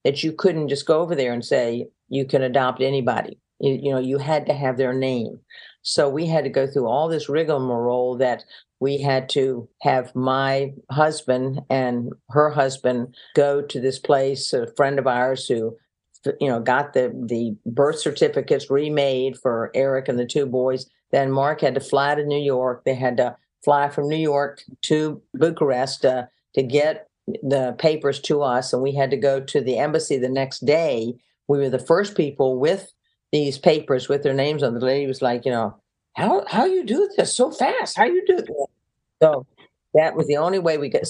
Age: 50-69